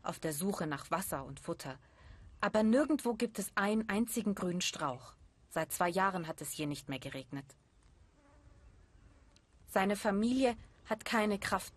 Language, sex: German, female